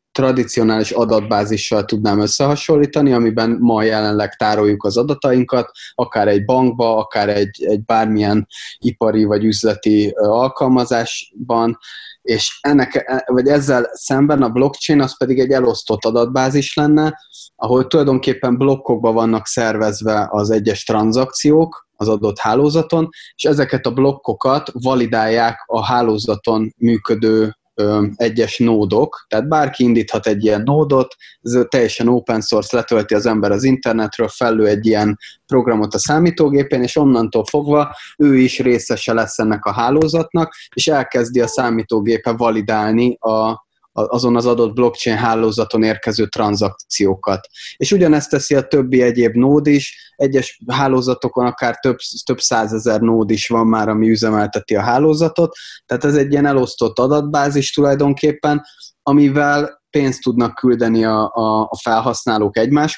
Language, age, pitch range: Hungarian, 20-39, 110-140 Hz